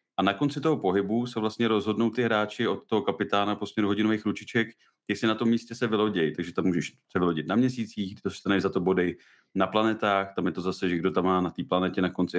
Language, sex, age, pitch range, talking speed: Czech, male, 30-49, 90-110 Hz, 235 wpm